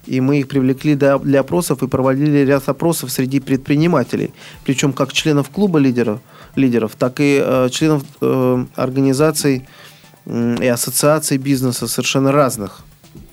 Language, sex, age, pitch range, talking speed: Russian, male, 20-39, 130-150 Hz, 135 wpm